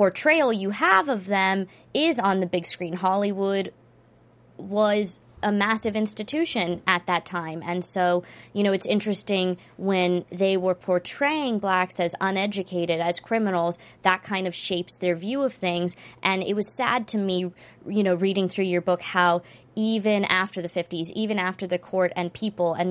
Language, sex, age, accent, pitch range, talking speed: English, female, 20-39, American, 175-200 Hz, 170 wpm